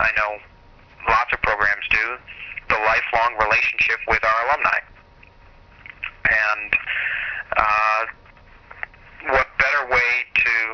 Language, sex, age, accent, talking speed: English, male, 40-59, American, 100 wpm